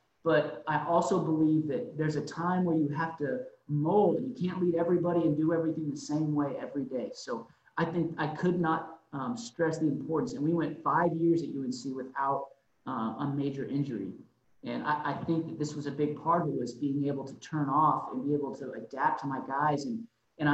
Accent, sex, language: American, male, English